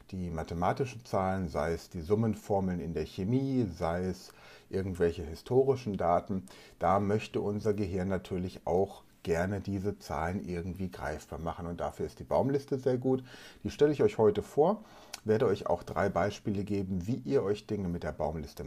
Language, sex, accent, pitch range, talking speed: German, male, German, 95-135 Hz, 170 wpm